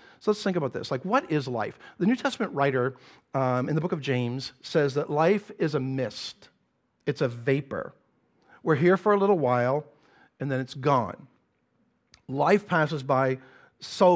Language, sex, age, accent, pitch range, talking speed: English, male, 50-69, American, 135-185 Hz, 180 wpm